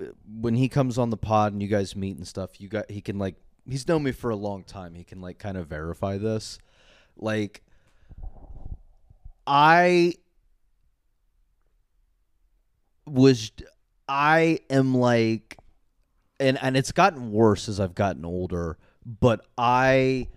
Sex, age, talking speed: male, 30-49, 140 wpm